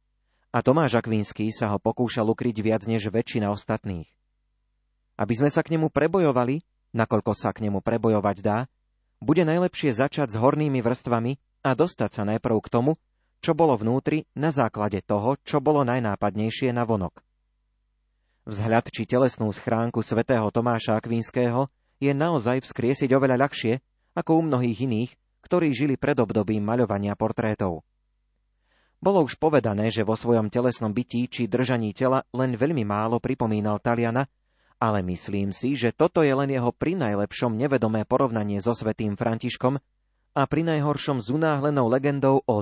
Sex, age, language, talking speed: male, 30-49, Slovak, 150 wpm